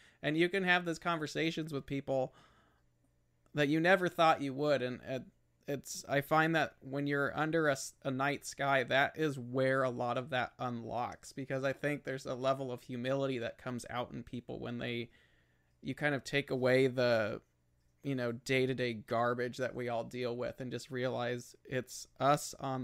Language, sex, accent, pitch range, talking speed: English, male, American, 120-145 Hz, 190 wpm